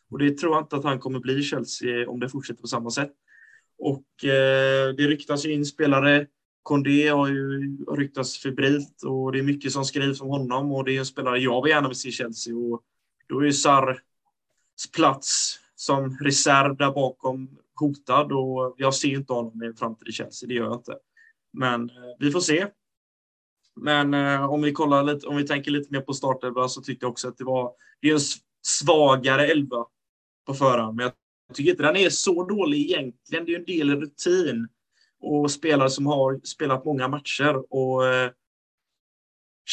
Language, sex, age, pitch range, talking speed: Swedish, male, 20-39, 130-150 Hz, 200 wpm